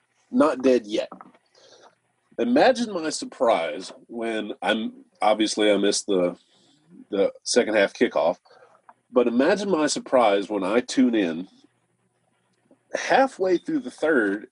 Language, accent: English, American